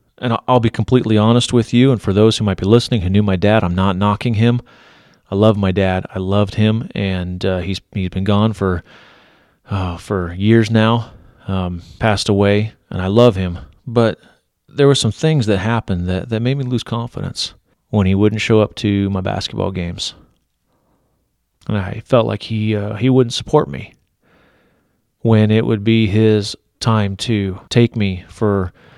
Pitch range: 100-115 Hz